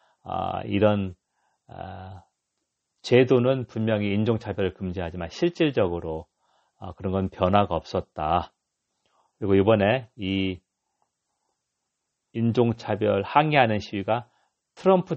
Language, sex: Korean, male